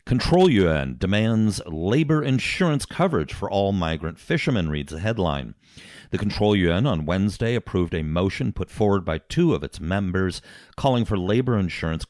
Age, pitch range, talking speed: 50-69, 80-110 Hz, 160 wpm